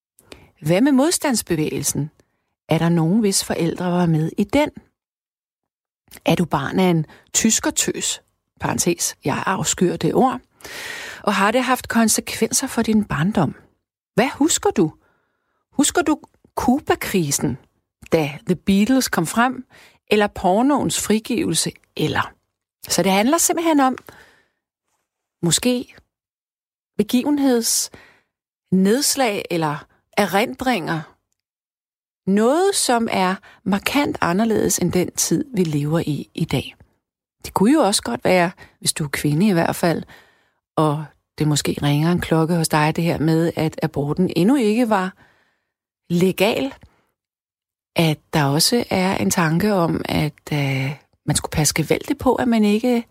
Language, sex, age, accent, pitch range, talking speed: Danish, female, 40-59, native, 165-245 Hz, 130 wpm